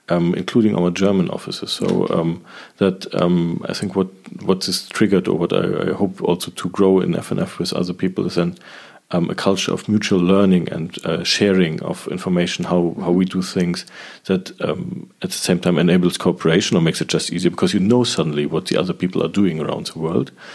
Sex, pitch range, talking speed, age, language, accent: male, 85-95 Hz, 215 wpm, 40-59, English, German